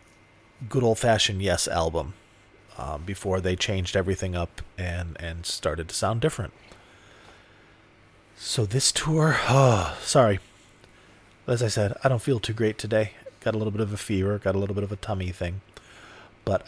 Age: 30-49